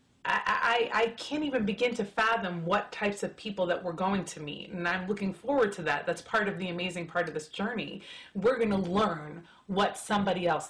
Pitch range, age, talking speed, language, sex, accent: 170-215 Hz, 30-49, 220 wpm, English, female, American